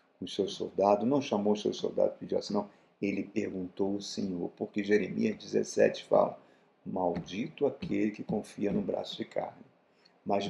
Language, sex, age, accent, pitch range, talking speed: Portuguese, male, 50-69, Brazilian, 95-115 Hz, 160 wpm